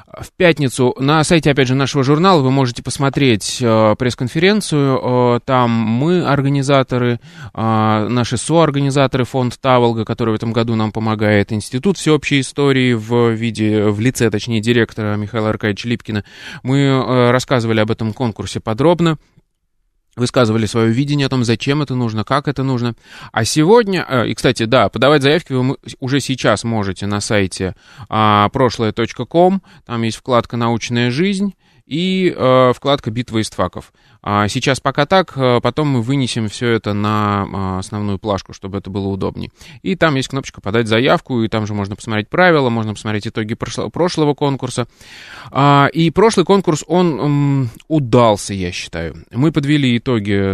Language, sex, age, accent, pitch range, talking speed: Russian, male, 20-39, native, 110-140 Hz, 150 wpm